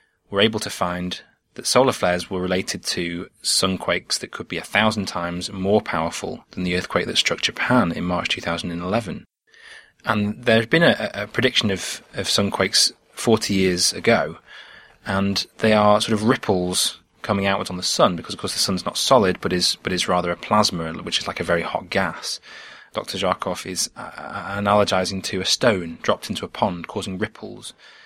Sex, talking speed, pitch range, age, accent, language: male, 185 wpm, 90-110 Hz, 20-39, British, English